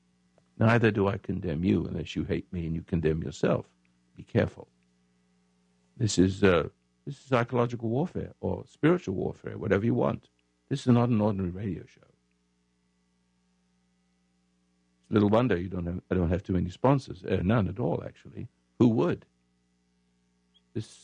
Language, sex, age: English, male, 60-79